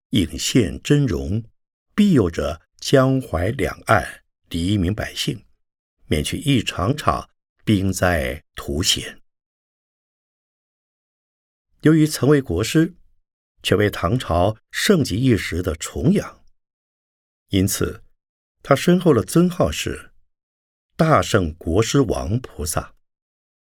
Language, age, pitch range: Chinese, 50-69, 85-130 Hz